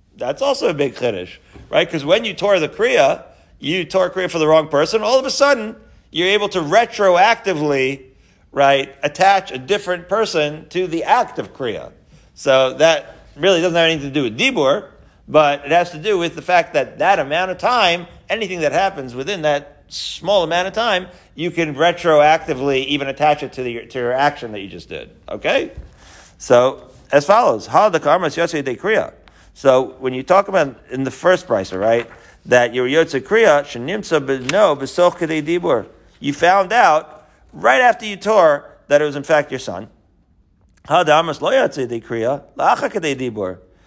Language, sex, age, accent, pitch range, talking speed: English, male, 50-69, American, 130-180 Hz, 165 wpm